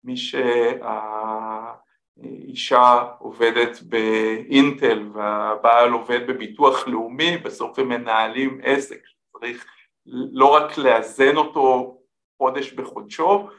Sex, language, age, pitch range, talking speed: male, Hebrew, 50-69, 120-175 Hz, 85 wpm